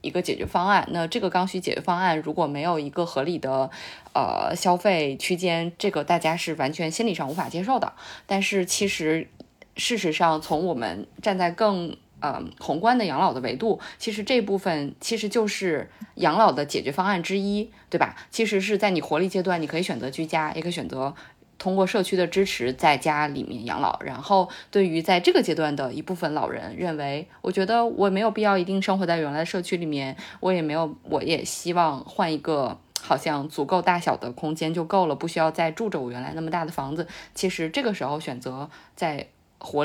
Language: Chinese